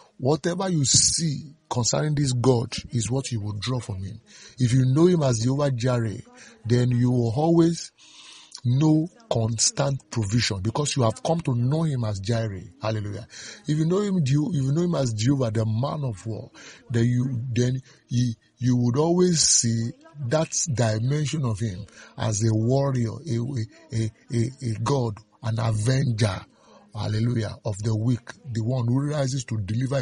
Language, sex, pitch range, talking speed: English, male, 115-145 Hz, 165 wpm